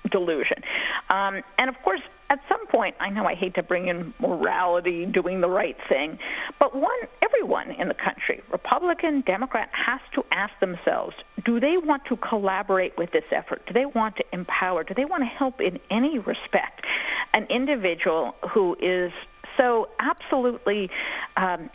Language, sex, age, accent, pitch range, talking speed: English, female, 50-69, American, 195-290 Hz, 165 wpm